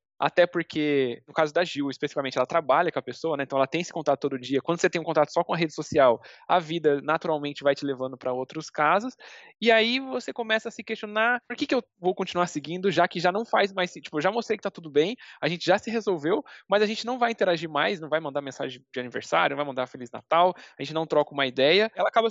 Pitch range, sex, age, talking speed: 155-230 Hz, male, 20-39, 265 wpm